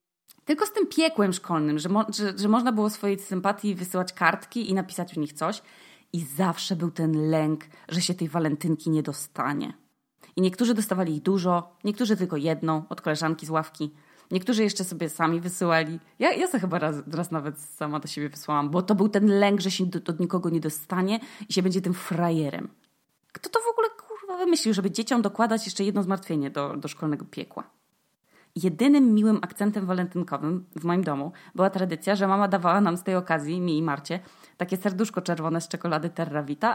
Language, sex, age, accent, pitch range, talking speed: Polish, female, 20-39, native, 165-215 Hz, 190 wpm